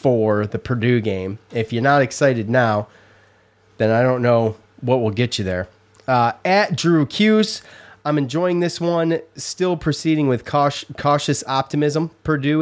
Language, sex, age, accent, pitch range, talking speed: English, male, 30-49, American, 110-145 Hz, 150 wpm